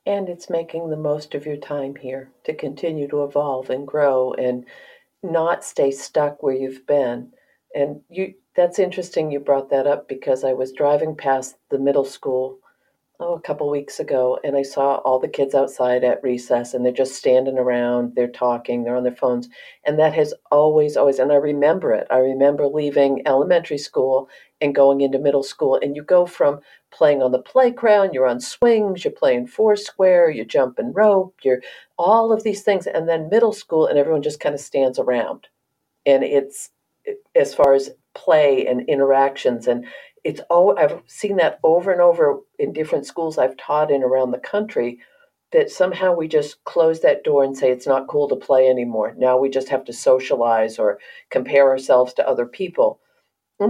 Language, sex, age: English, female, 50-69